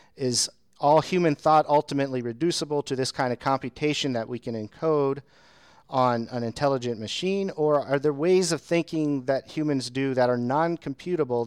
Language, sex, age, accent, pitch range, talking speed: English, male, 40-59, American, 115-145 Hz, 160 wpm